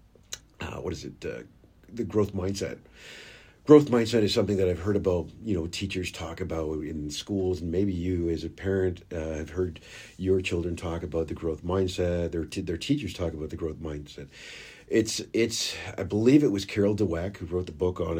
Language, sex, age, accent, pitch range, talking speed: English, male, 40-59, American, 85-105 Hz, 200 wpm